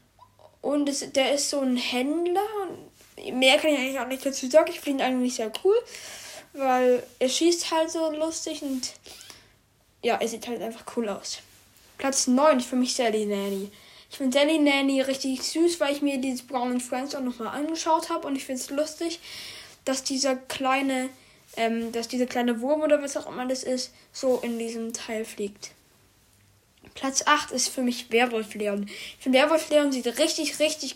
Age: 10-29